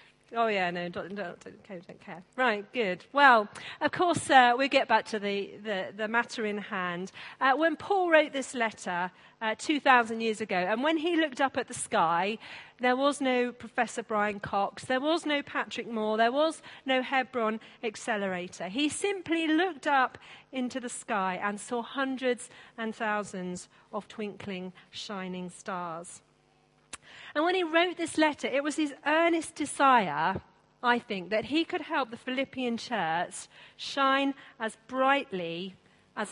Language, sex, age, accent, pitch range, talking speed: English, female, 40-59, British, 210-275 Hz, 160 wpm